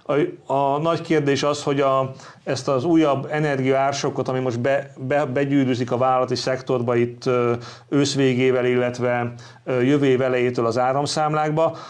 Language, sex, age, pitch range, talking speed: Hungarian, male, 40-59, 125-145 Hz, 135 wpm